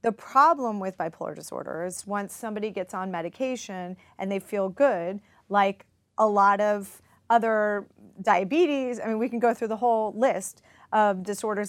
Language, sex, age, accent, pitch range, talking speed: English, female, 30-49, American, 185-220 Hz, 165 wpm